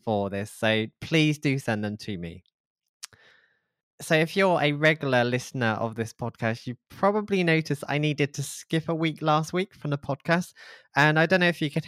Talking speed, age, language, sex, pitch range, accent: 195 wpm, 20-39, English, male, 120-150 Hz, British